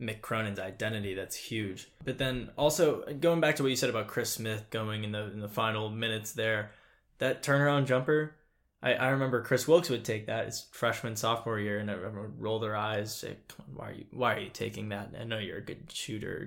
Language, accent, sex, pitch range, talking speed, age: English, American, male, 105-125 Hz, 225 wpm, 10-29